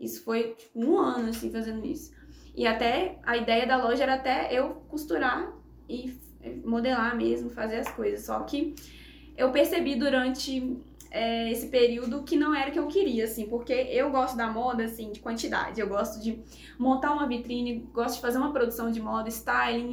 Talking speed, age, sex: 180 wpm, 10-29, female